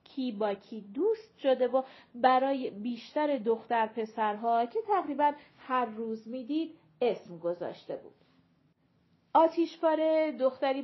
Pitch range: 210-280 Hz